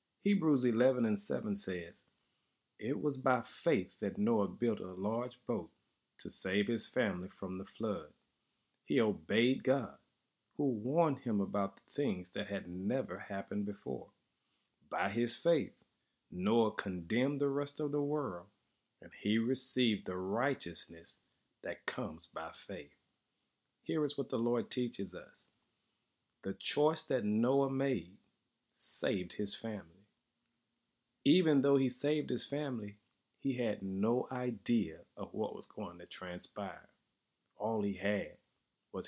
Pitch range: 100-135 Hz